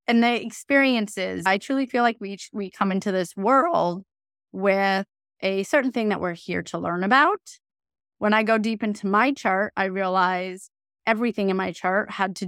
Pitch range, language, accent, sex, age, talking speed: 185-240 Hz, English, American, female, 30-49, 185 wpm